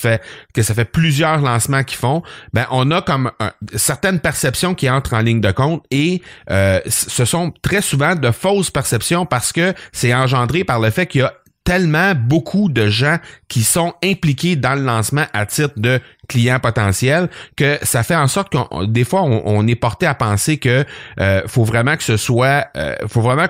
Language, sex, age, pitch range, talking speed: French, male, 30-49, 115-150 Hz, 205 wpm